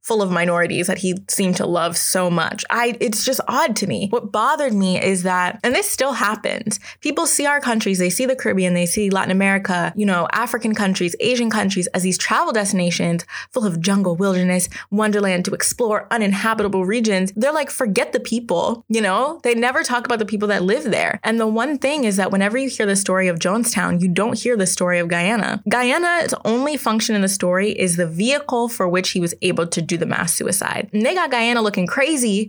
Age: 20-39